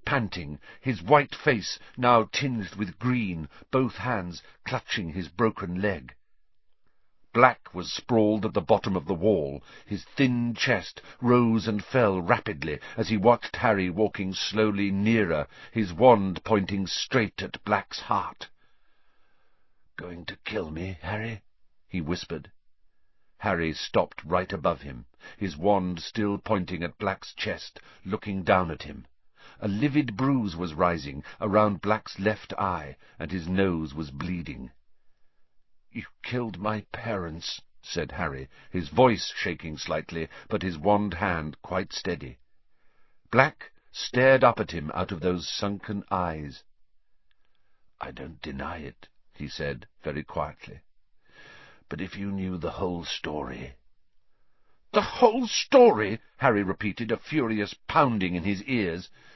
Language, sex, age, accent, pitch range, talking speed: English, male, 50-69, British, 90-110 Hz, 135 wpm